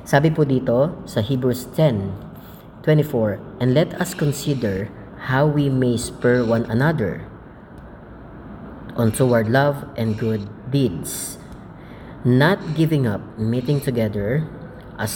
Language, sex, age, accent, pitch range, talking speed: Filipino, female, 20-39, native, 115-155 Hz, 105 wpm